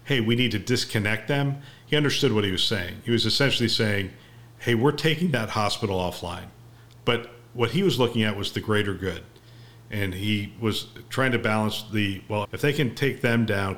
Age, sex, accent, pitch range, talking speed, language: 50-69, male, American, 105-125 Hz, 200 wpm, English